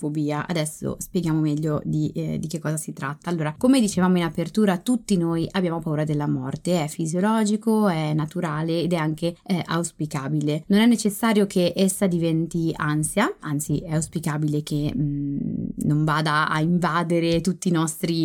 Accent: native